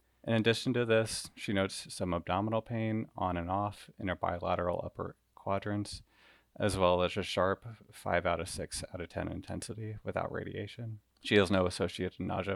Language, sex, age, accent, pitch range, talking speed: English, male, 30-49, American, 90-105 Hz, 175 wpm